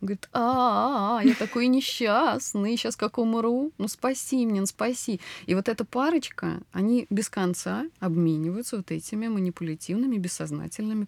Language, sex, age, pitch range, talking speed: Russian, female, 20-39, 155-215 Hz, 130 wpm